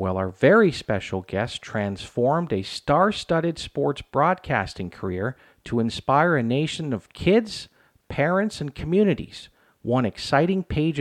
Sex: male